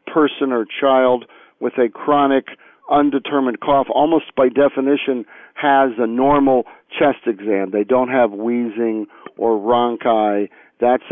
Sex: male